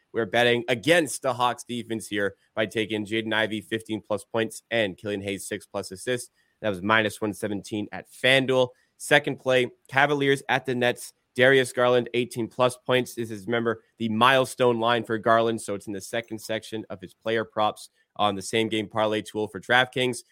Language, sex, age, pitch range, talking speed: English, male, 20-39, 110-135 Hz, 185 wpm